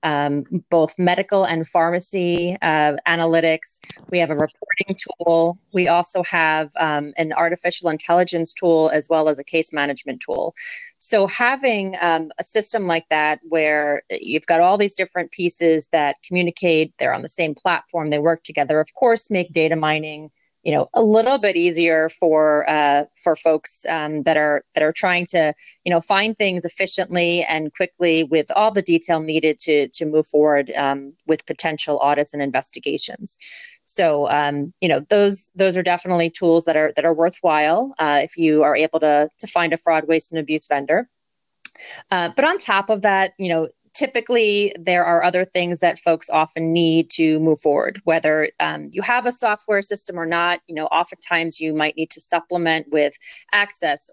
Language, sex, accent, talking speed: English, female, American, 180 wpm